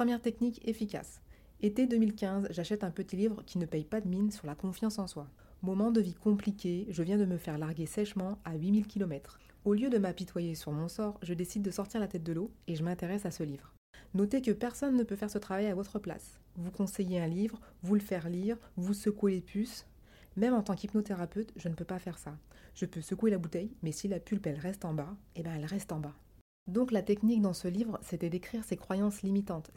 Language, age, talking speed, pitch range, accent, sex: French, 30-49, 240 wpm, 170-210 Hz, French, female